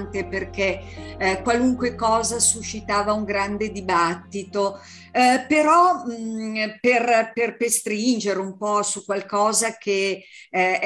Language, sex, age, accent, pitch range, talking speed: Italian, female, 50-69, native, 185-245 Hz, 110 wpm